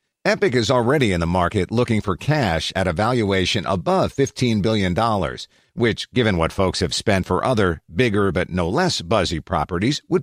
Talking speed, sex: 175 wpm, male